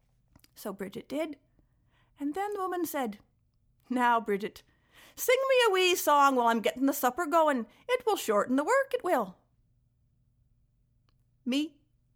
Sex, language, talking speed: female, English, 145 wpm